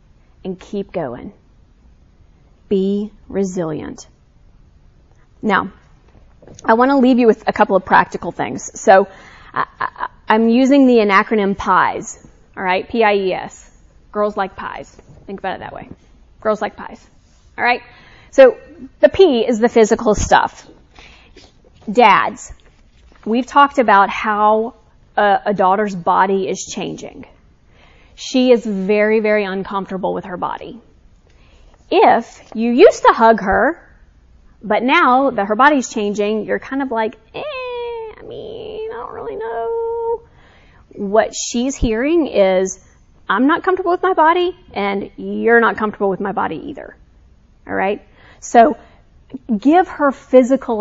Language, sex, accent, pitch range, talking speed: English, female, American, 200-280 Hz, 130 wpm